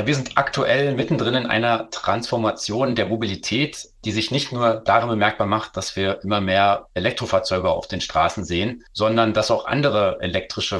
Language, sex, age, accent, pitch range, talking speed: German, male, 30-49, German, 95-115 Hz, 165 wpm